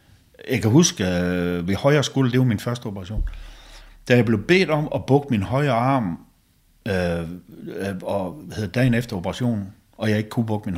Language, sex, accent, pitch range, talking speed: Danish, male, native, 95-130 Hz, 190 wpm